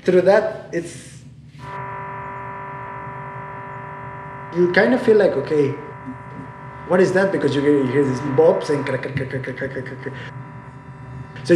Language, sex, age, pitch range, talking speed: Dutch, male, 20-39, 130-185 Hz, 140 wpm